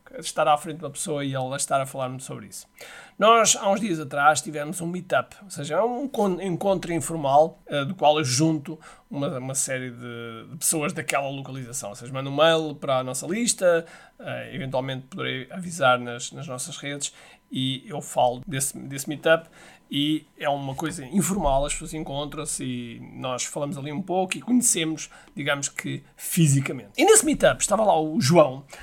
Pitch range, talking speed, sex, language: 140-185 Hz, 185 wpm, male, Portuguese